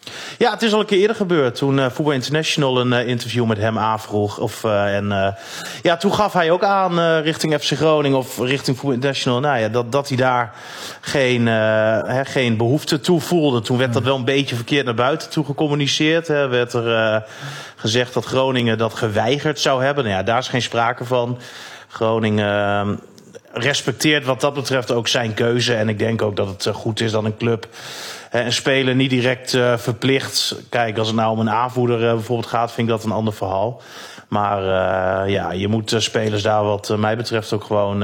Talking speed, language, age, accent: 210 wpm, Dutch, 30-49, Dutch